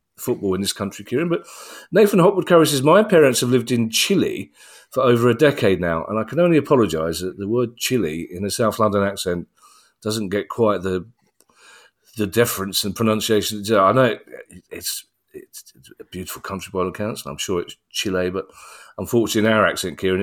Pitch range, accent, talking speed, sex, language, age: 95-120 Hz, British, 195 wpm, male, English, 40-59